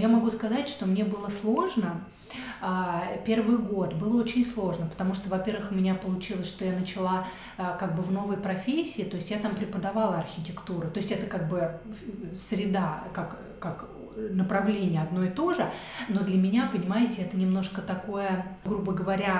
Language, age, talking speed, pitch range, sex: Russian, 30-49, 165 wpm, 185-225 Hz, female